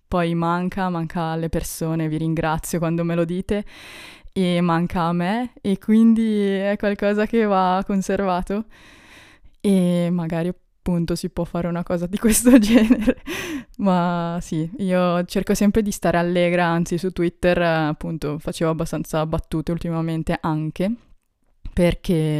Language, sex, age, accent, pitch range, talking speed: Italian, female, 20-39, native, 165-195 Hz, 135 wpm